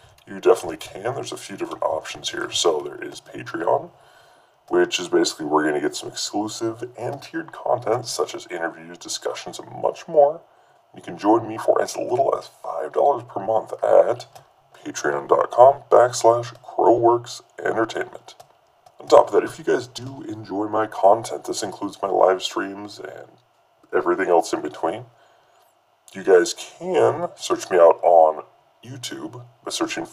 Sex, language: female, English